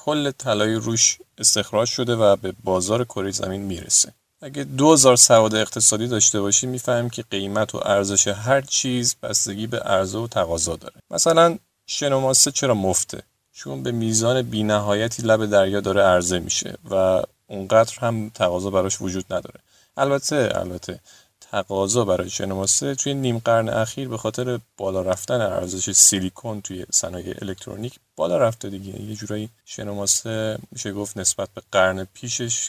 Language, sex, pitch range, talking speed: Persian, male, 100-125 Hz, 145 wpm